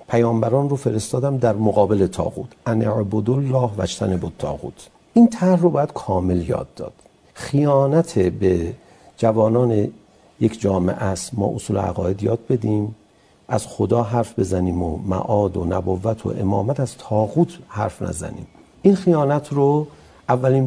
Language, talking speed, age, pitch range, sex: Persian, 135 wpm, 50-69, 105-155 Hz, male